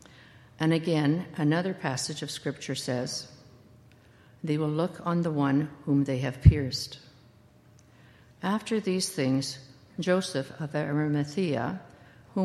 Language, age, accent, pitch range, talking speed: English, 60-79, American, 135-170 Hz, 115 wpm